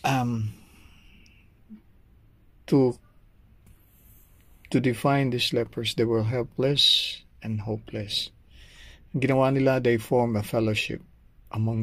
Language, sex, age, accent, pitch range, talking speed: Filipino, male, 50-69, native, 105-115 Hz, 80 wpm